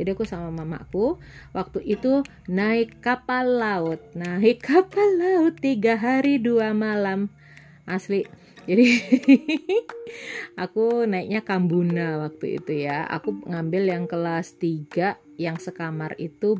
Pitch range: 170-250 Hz